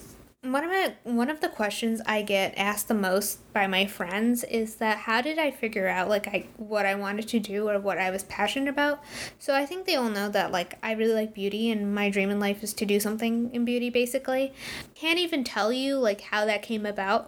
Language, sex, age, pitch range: English, female, 10-29, 205-245 Hz